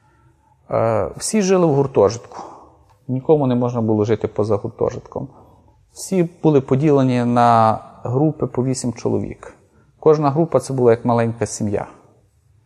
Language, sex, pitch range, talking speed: Ukrainian, male, 120-155 Hz, 125 wpm